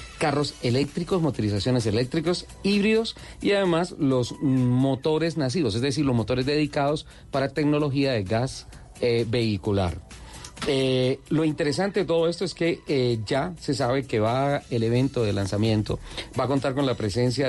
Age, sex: 40-59, male